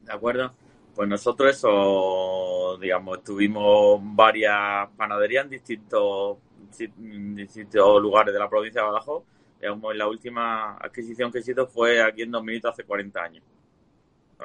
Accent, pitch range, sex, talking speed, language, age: Spanish, 100-120 Hz, male, 140 wpm, Spanish, 30-49